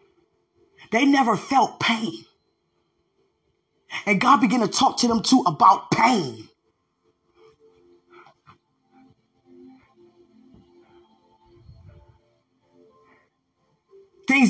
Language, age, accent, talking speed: English, 20-39, American, 60 wpm